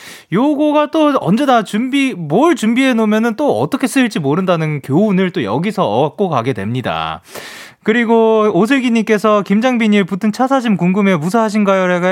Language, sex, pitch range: Korean, male, 150-230 Hz